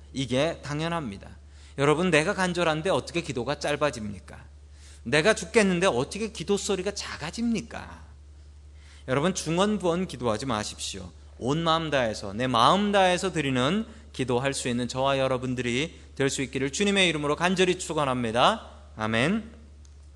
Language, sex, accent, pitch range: Korean, male, native, 105-175 Hz